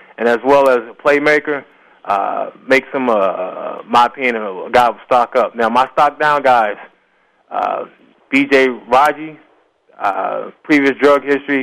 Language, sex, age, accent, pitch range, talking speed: English, male, 20-39, American, 125-140 Hz, 155 wpm